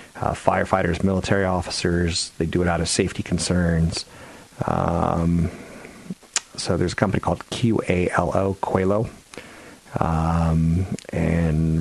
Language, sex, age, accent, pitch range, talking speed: English, male, 30-49, American, 80-95 Hz, 100 wpm